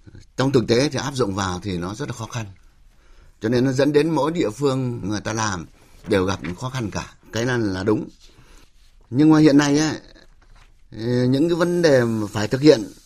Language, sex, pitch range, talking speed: Vietnamese, male, 95-135 Hz, 210 wpm